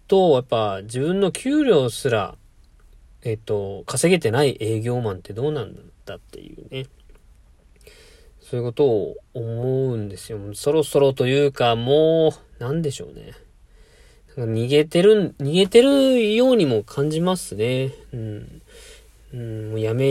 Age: 40-59